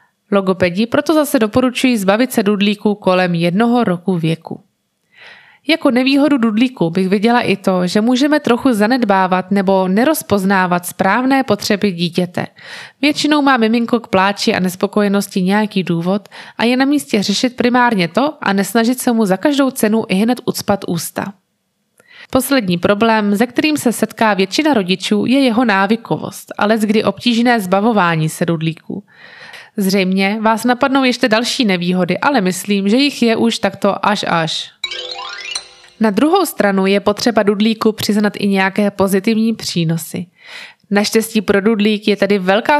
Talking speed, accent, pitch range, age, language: 145 wpm, native, 200-245 Hz, 20-39, Czech